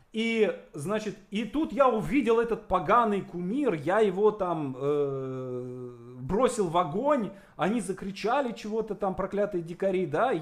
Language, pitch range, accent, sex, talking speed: Russian, 165-230 Hz, native, male, 130 wpm